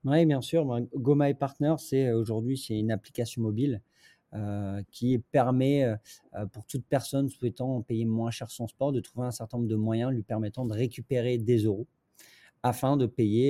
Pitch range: 110-130 Hz